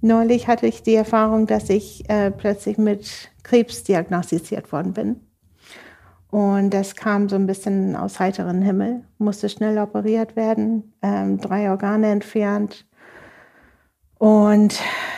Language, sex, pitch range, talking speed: German, female, 200-225 Hz, 125 wpm